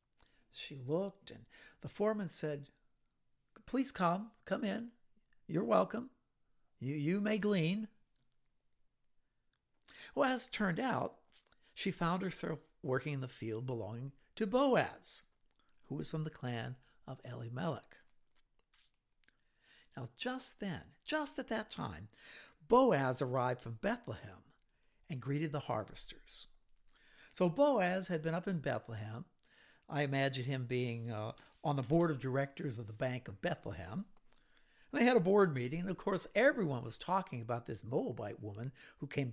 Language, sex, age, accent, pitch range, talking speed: English, male, 60-79, American, 125-190 Hz, 140 wpm